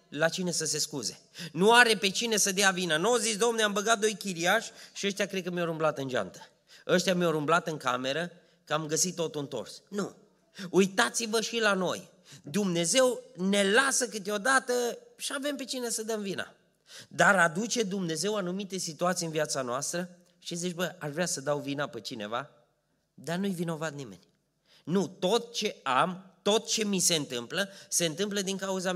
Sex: male